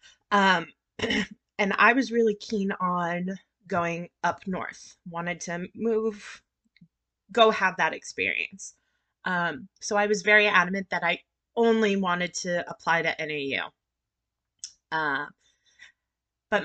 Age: 20-39